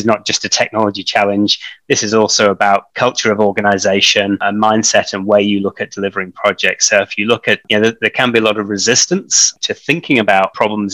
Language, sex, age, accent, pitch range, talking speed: English, male, 20-39, British, 100-110 Hz, 225 wpm